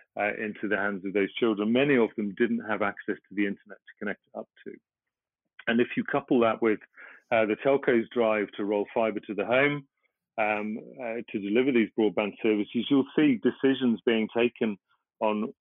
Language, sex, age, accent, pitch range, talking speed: English, male, 40-59, British, 105-120 Hz, 190 wpm